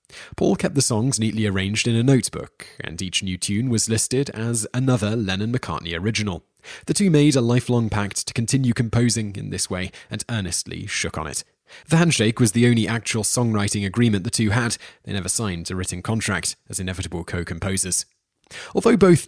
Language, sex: English, male